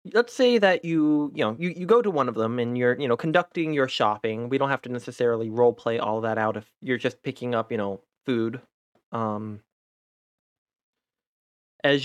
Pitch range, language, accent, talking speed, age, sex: 115-150 Hz, English, American, 200 wpm, 20-39, male